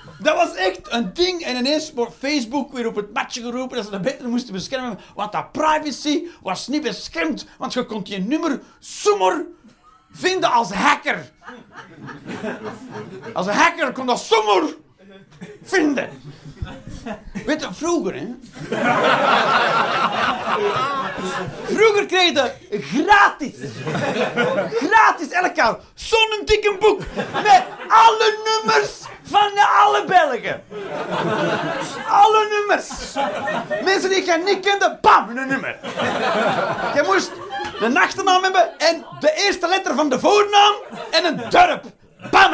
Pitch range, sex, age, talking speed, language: 245-385 Hz, male, 40-59, 125 wpm, Dutch